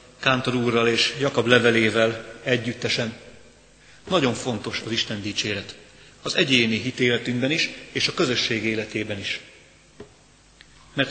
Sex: male